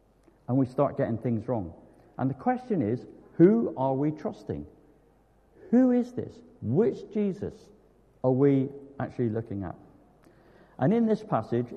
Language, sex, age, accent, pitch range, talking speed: English, male, 60-79, British, 110-170 Hz, 145 wpm